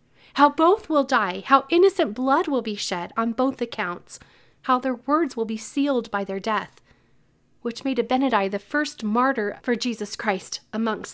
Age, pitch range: 40-59, 205-255 Hz